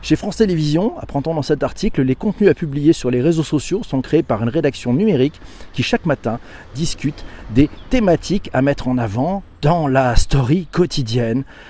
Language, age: French, 40-59